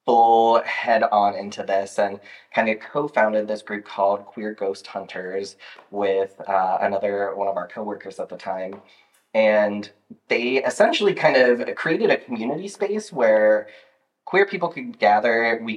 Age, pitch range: 20-39, 100-115 Hz